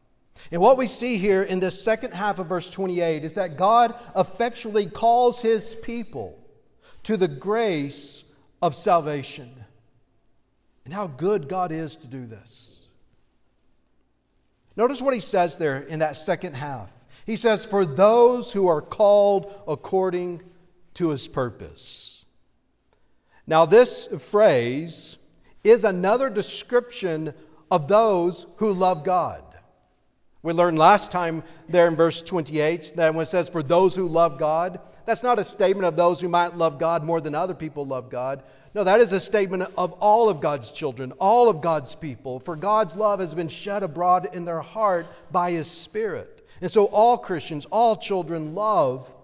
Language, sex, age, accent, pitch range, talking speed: English, male, 50-69, American, 150-205 Hz, 160 wpm